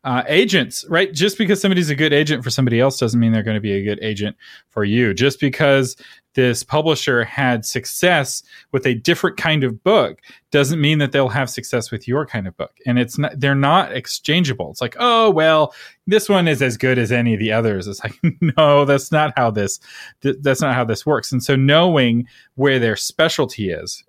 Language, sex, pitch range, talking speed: English, male, 120-155 Hz, 215 wpm